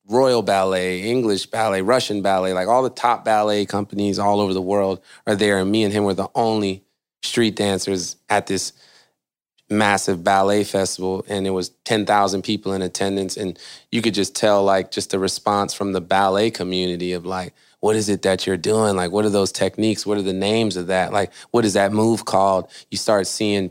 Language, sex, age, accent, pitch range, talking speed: English, male, 20-39, American, 95-105 Hz, 200 wpm